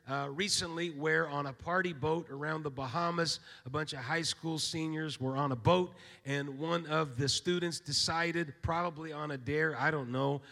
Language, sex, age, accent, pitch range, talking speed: English, male, 40-59, American, 150-185 Hz, 190 wpm